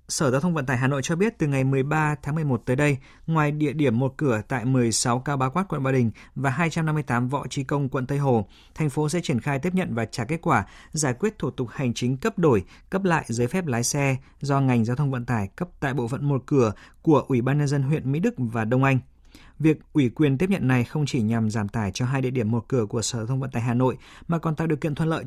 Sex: male